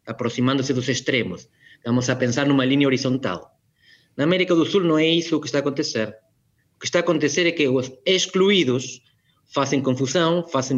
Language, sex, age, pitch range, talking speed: Portuguese, male, 30-49, 130-165 Hz, 185 wpm